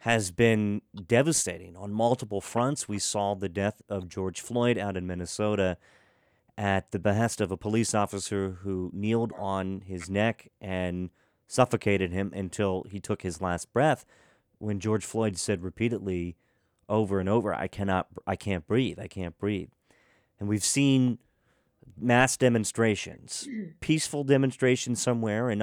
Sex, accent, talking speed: male, American, 145 wpm